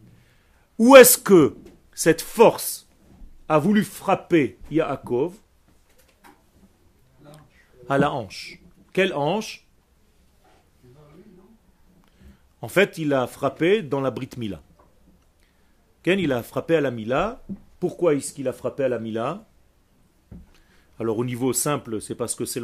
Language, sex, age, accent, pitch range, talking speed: French, male, 40-59, French, 100-155 Hz, 120 wpm